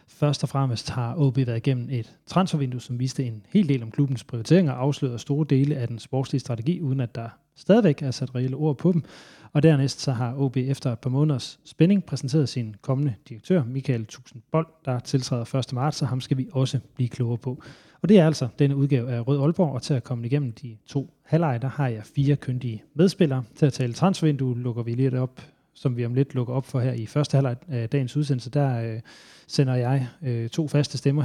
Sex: male